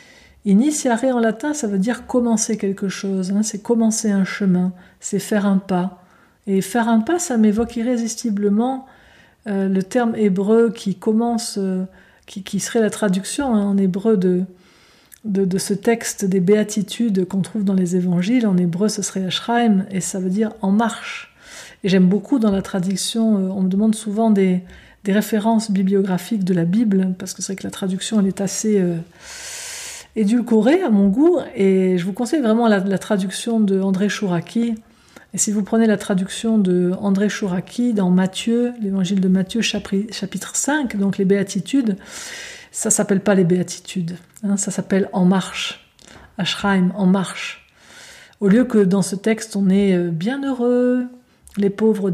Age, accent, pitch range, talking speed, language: 50-69, French, 190-225 Hz, 190 wpm, French